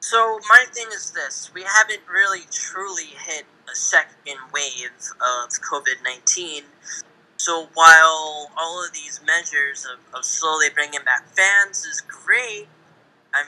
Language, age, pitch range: English, 10-29, 140-195 Hz